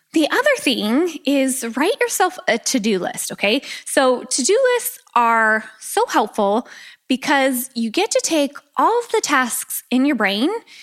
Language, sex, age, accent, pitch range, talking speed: English, female, 20-39, American, 205-275 Hz, 155 wpm